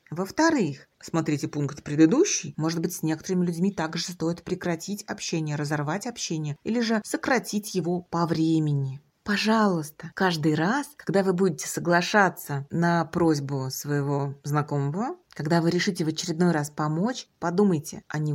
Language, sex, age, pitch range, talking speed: Russian, female, 30-49, 155-200 Hz, 135 wpm